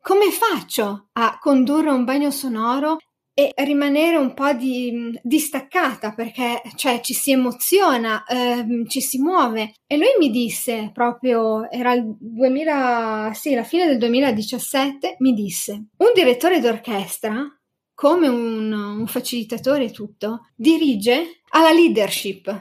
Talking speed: 130 wpm